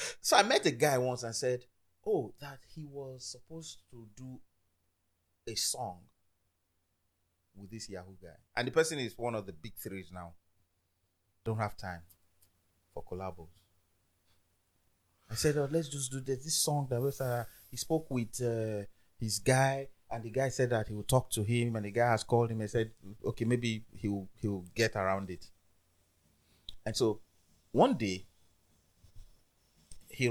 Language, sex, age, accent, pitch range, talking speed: English, male, 30-49, Nigerian, 90-125 Hz, 170 wpm